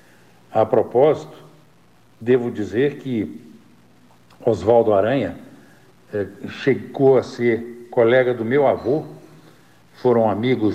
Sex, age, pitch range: male, 60-79, 110-135 Hz